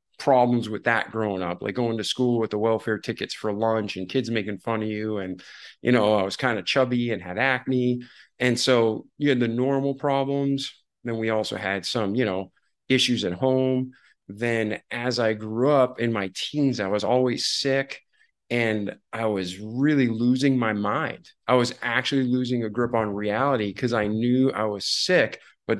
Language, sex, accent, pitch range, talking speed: English, male, American, 105-125 Hz, 195 wpm